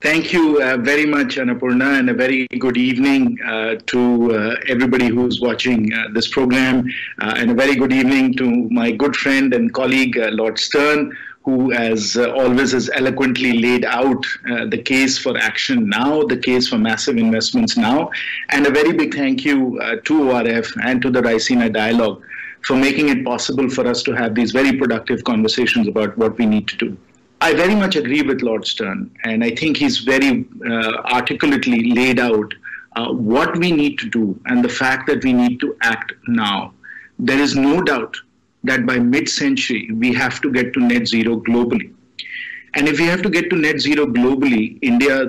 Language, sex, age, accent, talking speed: English, male, 50-69, Indian, 190 wpm